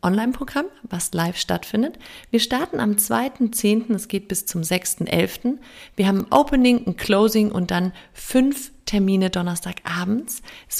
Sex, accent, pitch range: female, German, 185-235 Hz